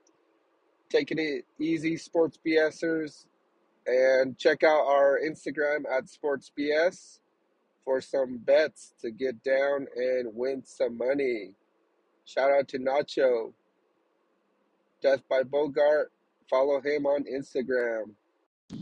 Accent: American